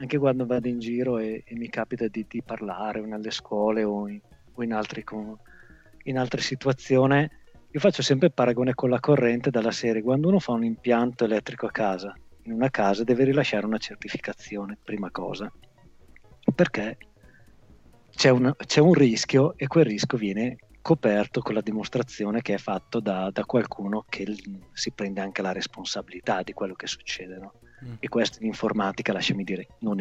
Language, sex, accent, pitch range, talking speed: Italian, male, native, 110-130 Hz, 175 wpm